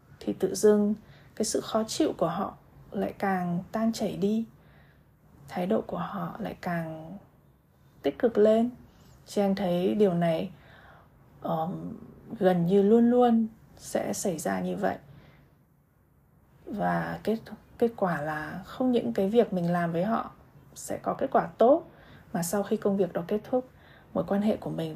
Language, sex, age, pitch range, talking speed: Vietnamese, female, 20-39, 170-215 Hz, 165 wpm